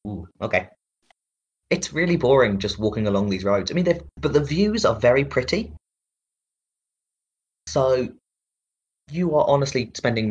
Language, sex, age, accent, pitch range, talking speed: English, male, 20-39, British, 100-125 Hz, 140 wpm